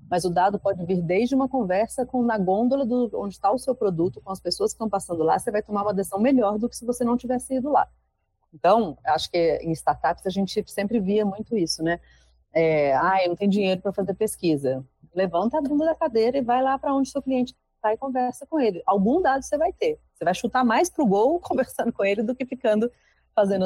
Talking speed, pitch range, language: 245 wpm, 185-260 Hz, Portuguese